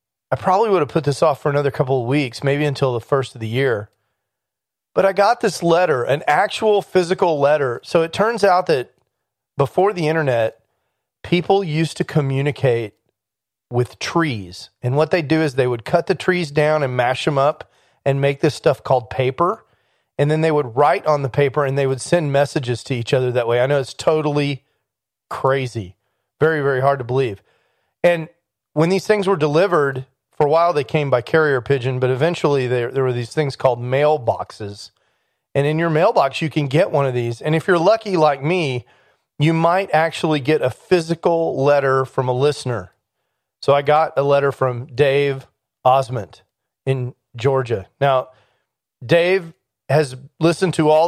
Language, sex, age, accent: English, male, 40-59, American